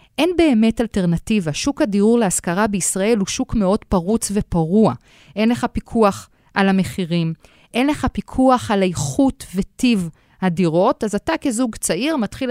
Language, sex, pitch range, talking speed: Hebrew, female, 185-265 Hz, 140 wpm